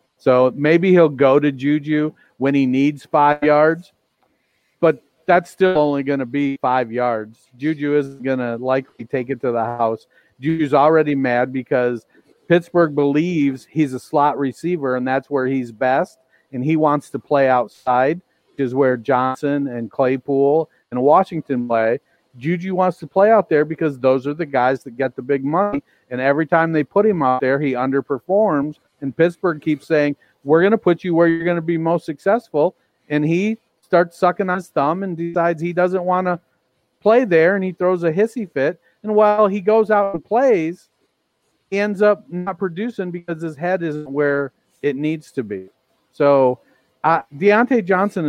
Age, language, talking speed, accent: 40-59, English, 185 wpm, American